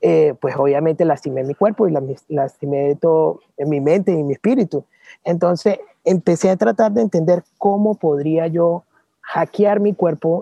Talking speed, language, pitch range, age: 160 wpm, English, 155-195 Hz, 30-49